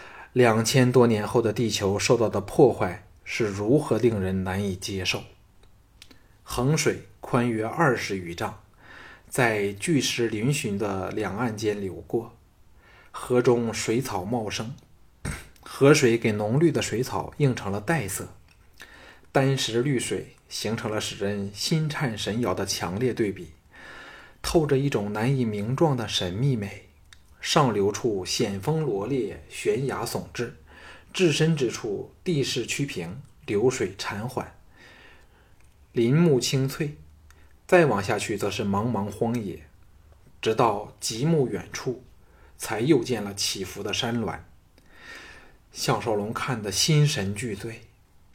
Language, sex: Chinese, male